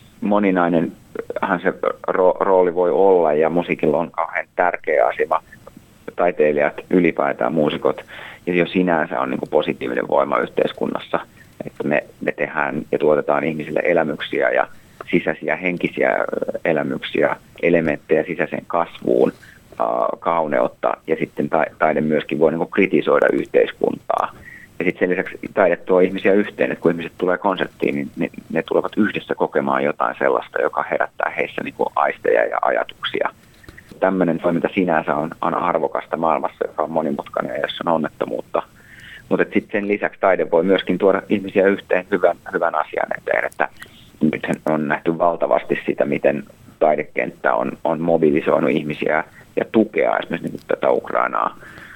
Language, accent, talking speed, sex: Finnish, native, 135 wpm, male